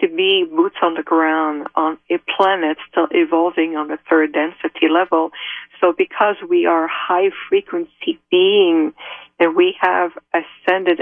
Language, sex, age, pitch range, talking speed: English, female, 50-69, 160-210 Hz, 145 wpm